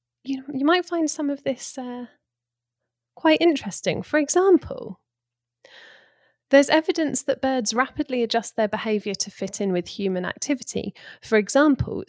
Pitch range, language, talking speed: 175-245 Hz, English, 140 wpm